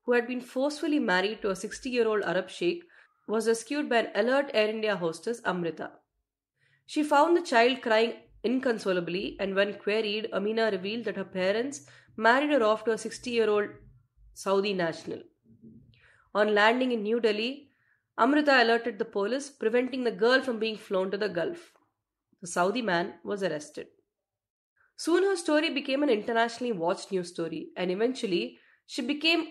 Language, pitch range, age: English, 185-255 Hz, 20-39